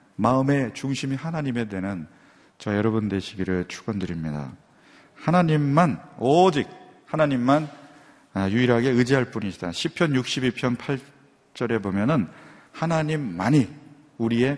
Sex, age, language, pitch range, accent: male, 40-59, Korean, 105-140 Hz, native